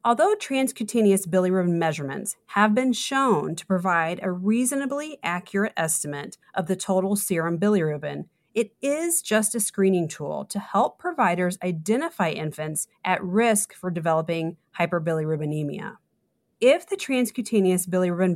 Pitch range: 165-225 Hz